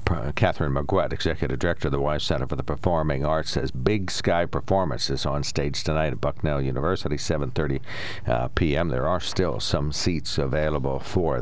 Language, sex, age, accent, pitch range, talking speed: English, male, 60-79, American, 80-105 Hz, 175 wpm